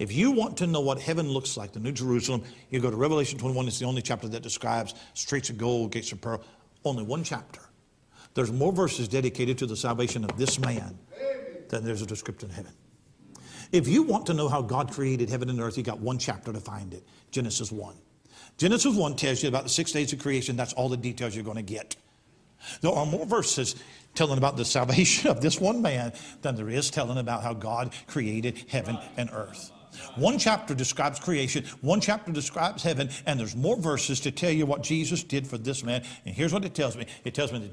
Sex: male